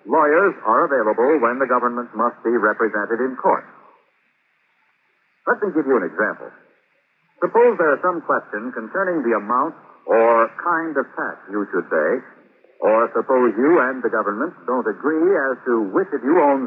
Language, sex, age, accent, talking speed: English, male, 60-79, American, 165 wpm